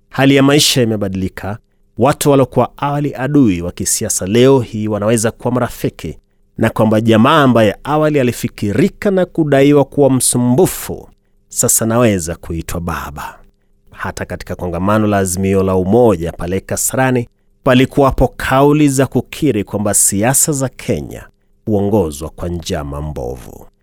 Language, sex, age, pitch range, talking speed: Swahili, male, 30-49, 100-130 Hz, 125 wpm